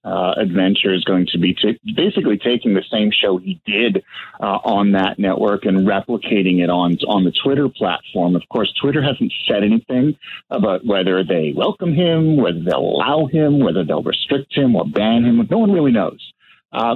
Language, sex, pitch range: English, male, 100-145 Hz